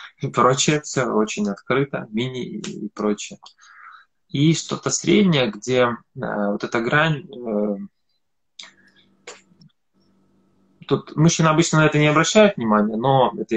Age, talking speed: 20-39, 125 wpm